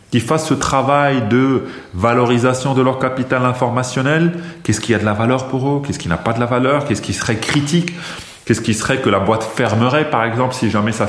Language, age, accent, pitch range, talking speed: French, 30-49, French, 95-130 Hz, 220 wpm